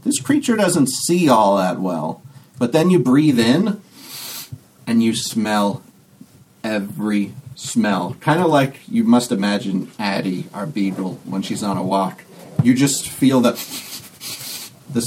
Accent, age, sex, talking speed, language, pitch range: American, 40-59, male, 145 wpm, English, 120-160 Hz